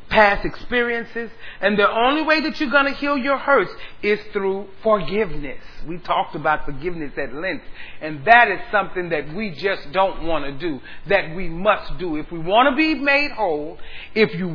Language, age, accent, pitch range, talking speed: English, 40-59, American, 180-275 Hz, 190 wpm